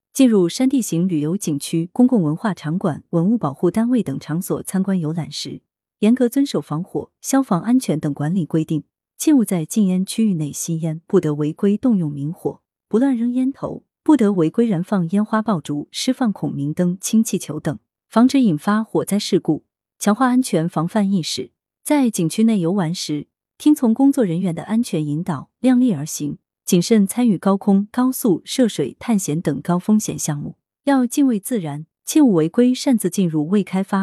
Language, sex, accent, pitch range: Chinese, female, native, 160-230 Hz